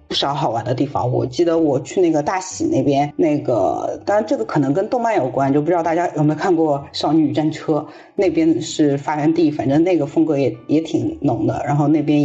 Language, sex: Chinese, female